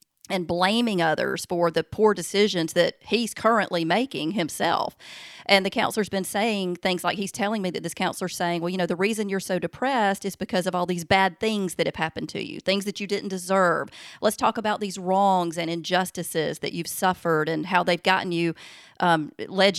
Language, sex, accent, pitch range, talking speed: English, female, American, 170-200 Hz, 205 wpm